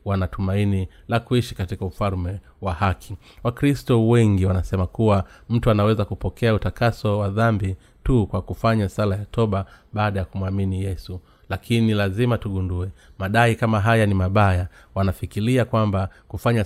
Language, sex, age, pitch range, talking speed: Swahili, male, 30-49, 95-115 Hz, 135 wpm